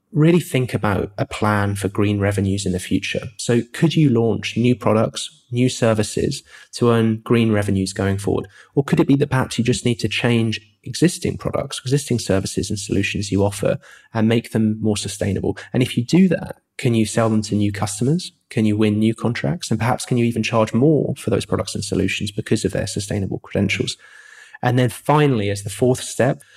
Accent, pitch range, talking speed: British, 100-125 Hz, 205 wpm